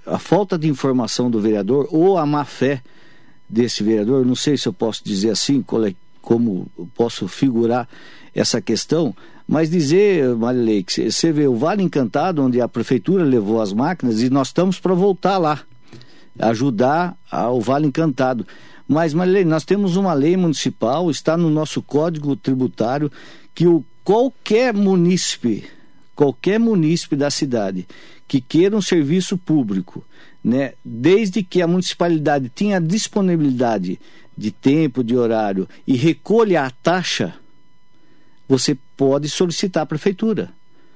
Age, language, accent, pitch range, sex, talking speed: 60-79, Portuguese, Brazilian, 130-180 Hz, male, 140 wpm